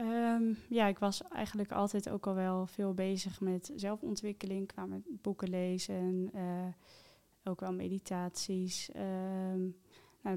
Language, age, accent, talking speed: Dutch, 20-39, Dutch, 135 wpm